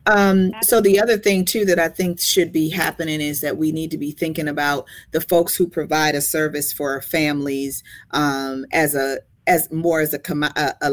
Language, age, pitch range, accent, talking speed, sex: English, 40-59, 145-180 Hz, American, 205 wpm, female